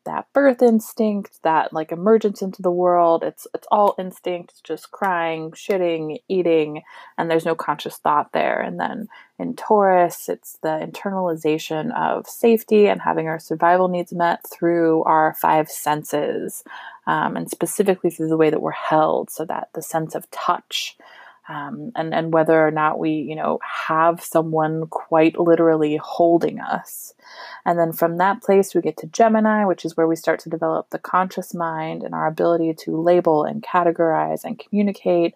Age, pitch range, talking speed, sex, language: 20-39, 160-185 Hz, 170 wpm, female, English